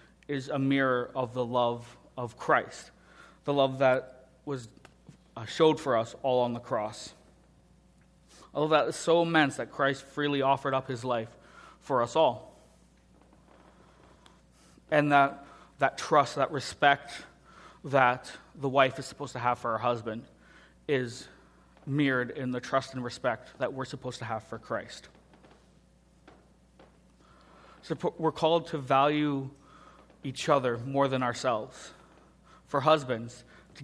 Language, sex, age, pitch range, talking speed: English, male, 30-49, 120-140 Hz, 135 wpm